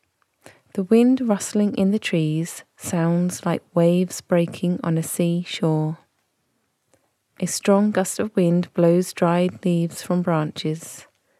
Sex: female